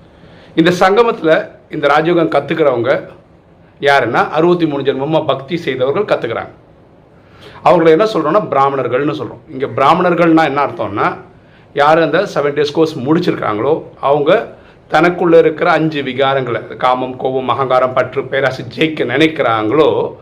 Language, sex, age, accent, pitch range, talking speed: Tamil, male, 50-69, native, 120-160 Hz, 120 wpm